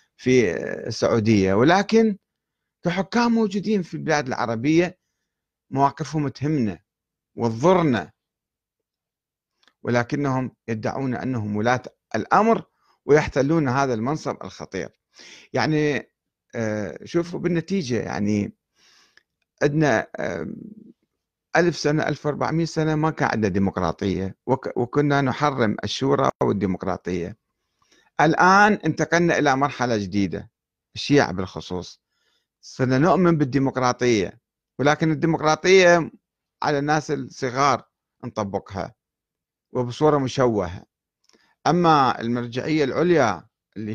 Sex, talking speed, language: male, 85 wpm, Arabic